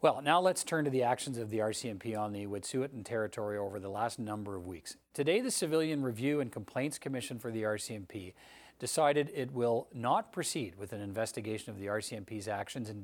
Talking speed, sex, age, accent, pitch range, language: 200 wpm, male, 40-59, American, 110-135 Hz, English